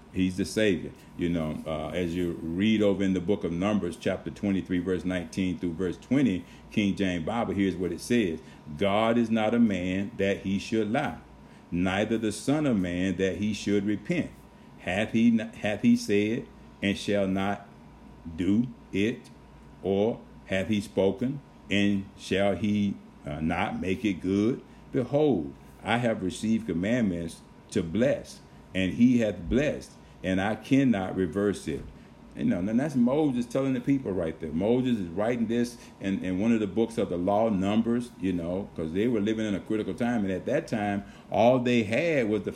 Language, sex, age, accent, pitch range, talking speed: English, male, 50-69, American, 90-115 Hz, 180 wpm